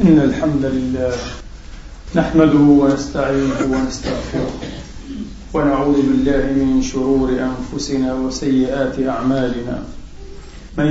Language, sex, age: Arabic, male, 40-59